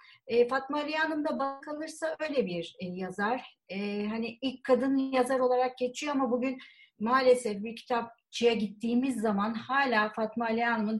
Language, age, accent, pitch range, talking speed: Turkish, 40-59, native, 200-245 Hz, 145 wpm